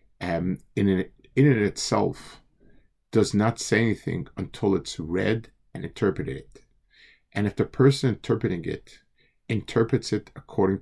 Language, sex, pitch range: English, male, 95-125 Hz